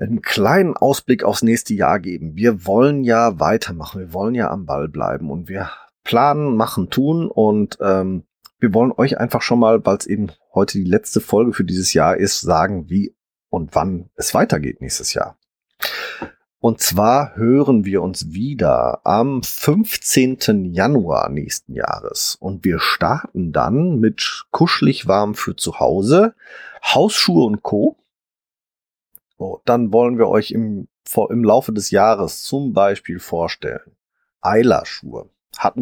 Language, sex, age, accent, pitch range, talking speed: German, male, 40-59, German, 95-130 Hz, 145 wpm